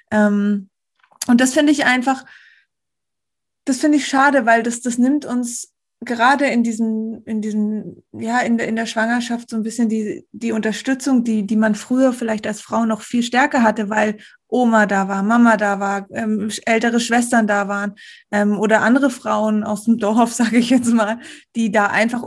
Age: 20-39